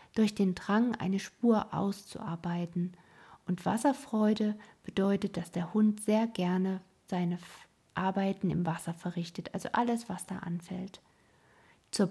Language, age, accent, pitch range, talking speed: German, 50-69, German, 185-220 Hz, 125 wpm